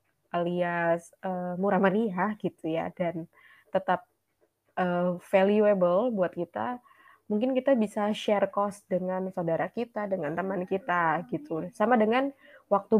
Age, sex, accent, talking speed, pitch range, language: 20-39, female, native, 125 wpm, 180-215 Hz, Indonesian